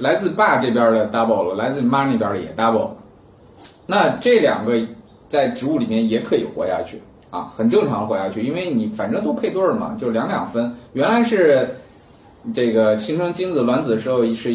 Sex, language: male, Chinese